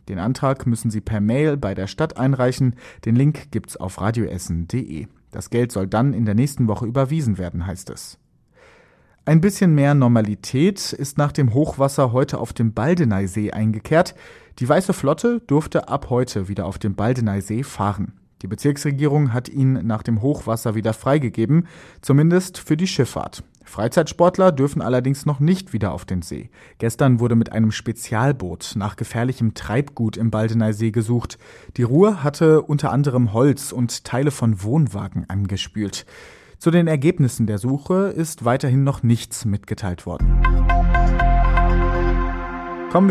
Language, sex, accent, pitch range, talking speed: German, male, German, 110-150 Hz, 150 wpm